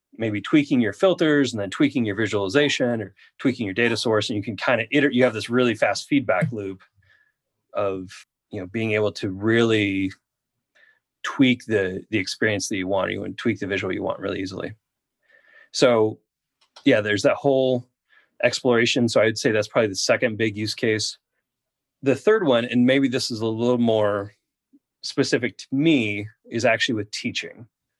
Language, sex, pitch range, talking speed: English, male, 105-125 Hz, 180 wpm